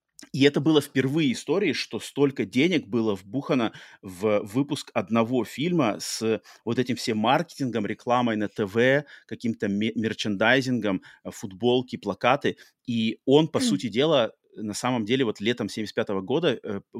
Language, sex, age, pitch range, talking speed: Russian, male, 30-49, 105-125 Hz, 135 wpm